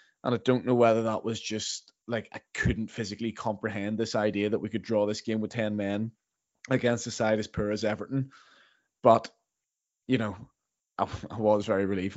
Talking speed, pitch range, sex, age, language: 190 wpm, 105-120 Hz, male, 20-39, English